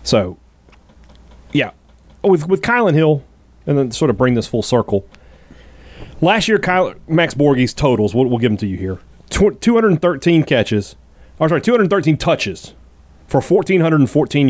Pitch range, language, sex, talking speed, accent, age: 100-165 Hz, English, male, 145 wpm, American, 30-49